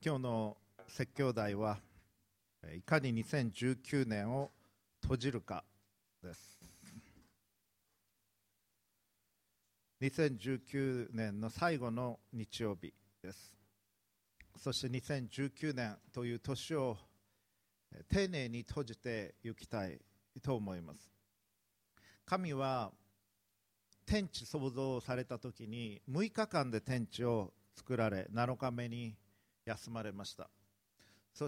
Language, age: Japanese, 50-69